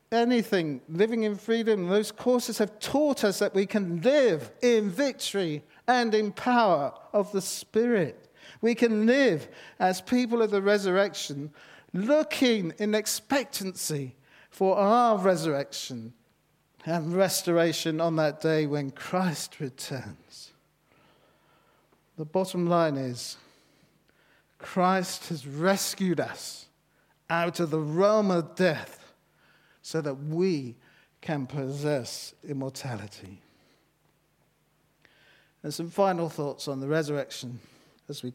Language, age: English, 50-69